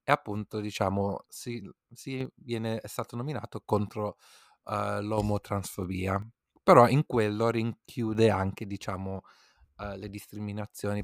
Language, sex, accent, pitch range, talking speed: Italian, male, native, 95-115 Hz, 115 wpm